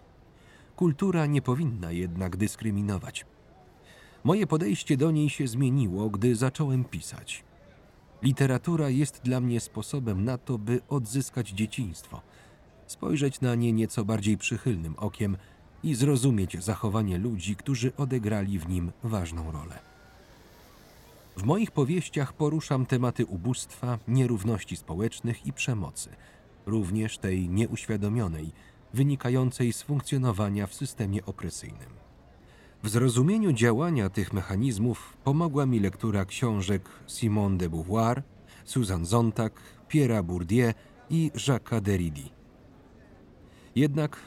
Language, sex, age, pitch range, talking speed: Polish, male, 40-59, 100-135 Hz, 110 wpm